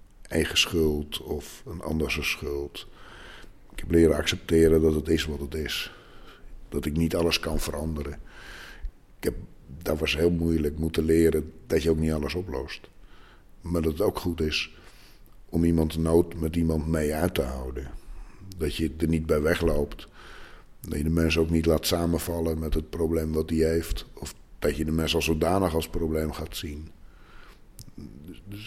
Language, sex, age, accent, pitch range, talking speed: Dutch, male, 60-79, Dutch, 75-85 Hz, 175 wpm